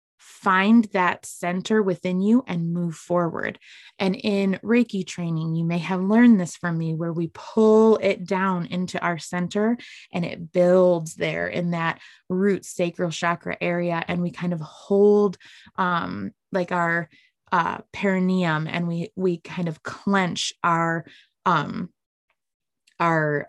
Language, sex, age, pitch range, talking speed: English, female, 20-39, 165-200 Hz, 145 wpm